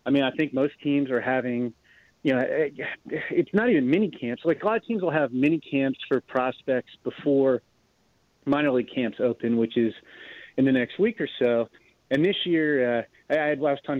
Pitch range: 125-155 Hz